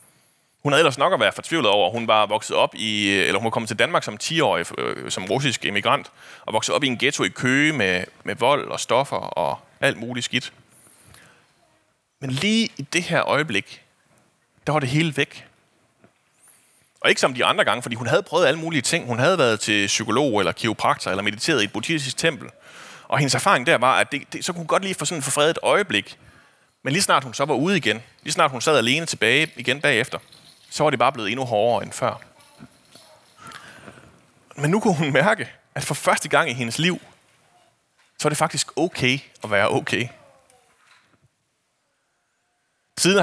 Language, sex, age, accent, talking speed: Danish, male, 30-49, native, 195 wpm